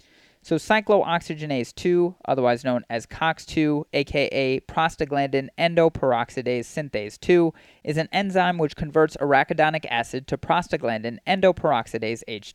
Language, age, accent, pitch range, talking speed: English, 30-49, American, 130-175 Hz, 105 wpm